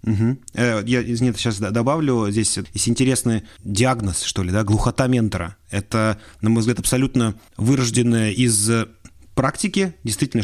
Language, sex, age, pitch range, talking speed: Russian, male, 30-49, 110-130 Hz, 140 wpm